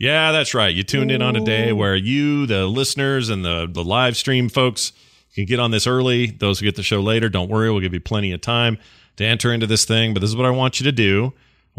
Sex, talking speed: male, 270 wpm